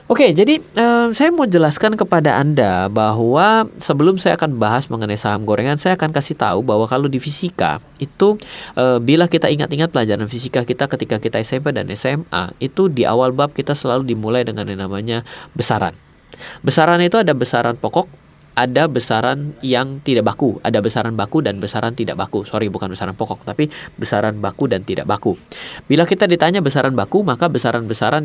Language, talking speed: Indonesian, 175 wpm